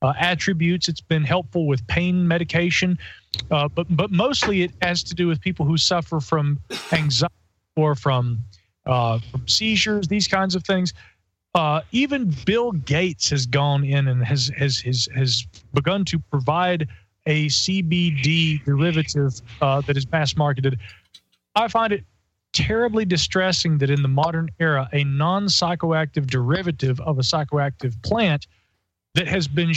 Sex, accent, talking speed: male, American, 150 wpm